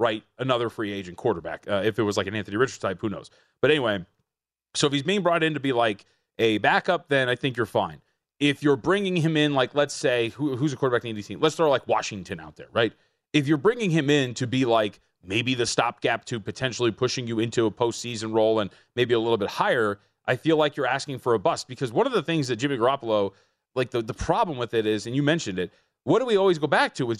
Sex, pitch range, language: male, 115-155 Hz, English